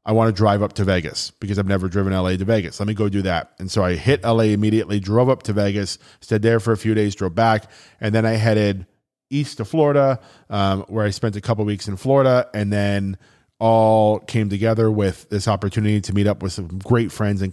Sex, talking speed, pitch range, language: male, 240 wpm, 100-115 Hz, English